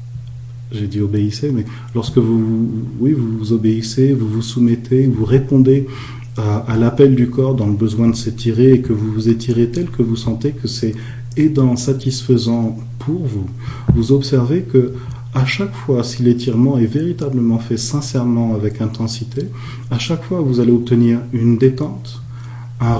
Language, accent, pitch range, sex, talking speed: French, French, 115-130 Hz, male, 160 wpm